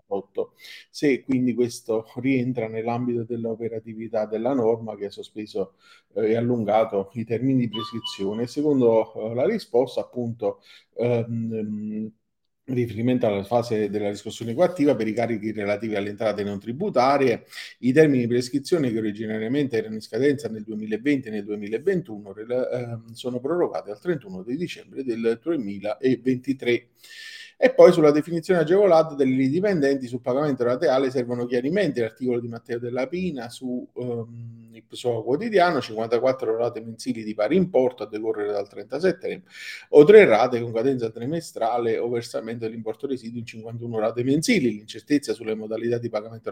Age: 40-59